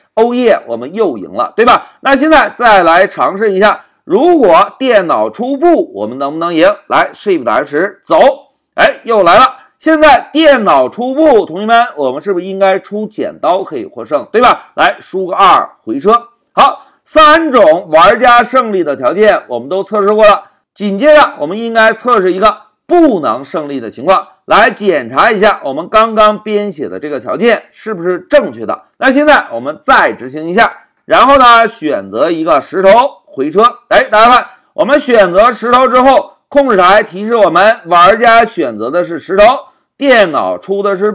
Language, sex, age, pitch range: Chinese, male, 50-69, 210-305 Hz